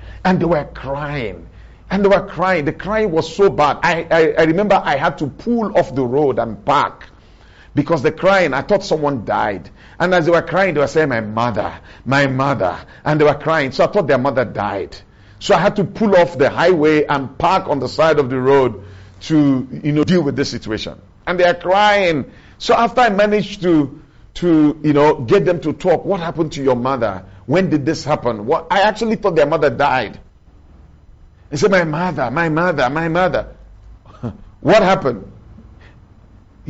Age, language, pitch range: 50-69, English, 135-200 Hz